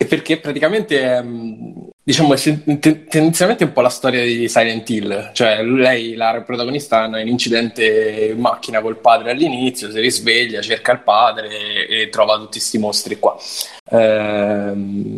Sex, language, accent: male, Italian, native